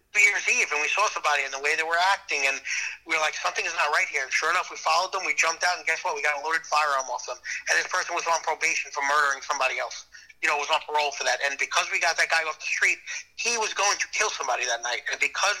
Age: 30-49